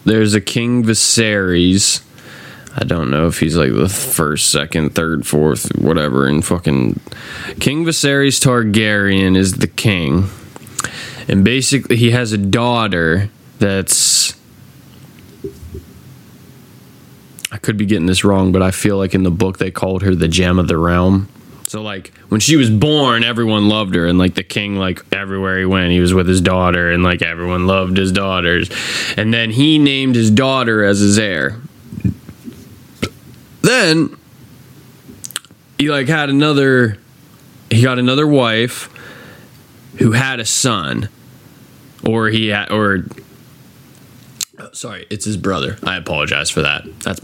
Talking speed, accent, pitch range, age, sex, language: 145 wpm, American, 95-125 Hz, 20-39, male, English